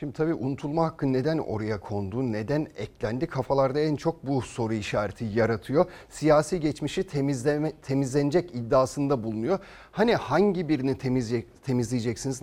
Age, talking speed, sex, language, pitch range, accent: 40-59, 125 wpm, male, Turkish, 130-195 Hz, native